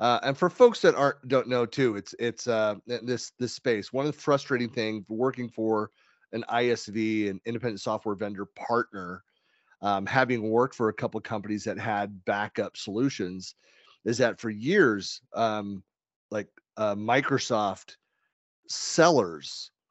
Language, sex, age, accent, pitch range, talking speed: English, male, 30-49, American, 110-135 Hz, 150 wpm